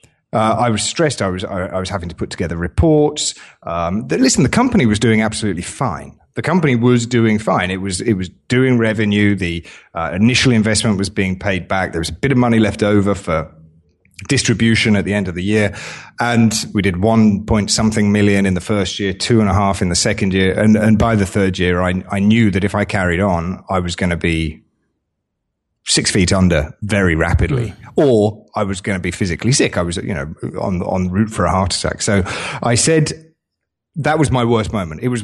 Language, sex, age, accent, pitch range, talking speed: English, male, 30-49, British, 95-115 Hz, 220 wpm